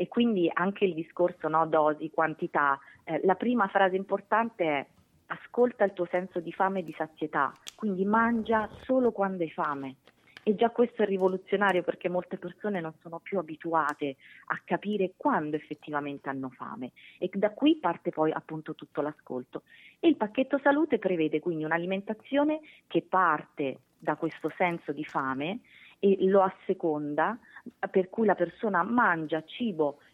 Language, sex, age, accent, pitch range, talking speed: English, female, 30-49, Italian, 155-200 Hz, 150 wpm